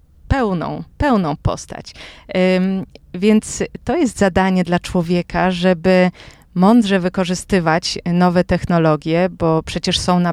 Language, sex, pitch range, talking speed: Polish, female, 175-200 Hz, 105 wpm